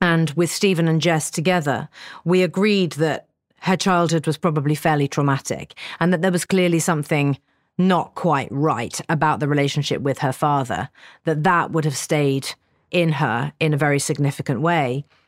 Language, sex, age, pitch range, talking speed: English, female, 40-59, 145-170 Hz, 165 wpm